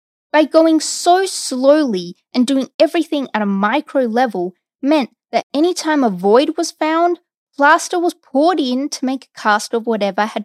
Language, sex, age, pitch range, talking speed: English, female, 20-39, 210-290 Hz, 170 wpm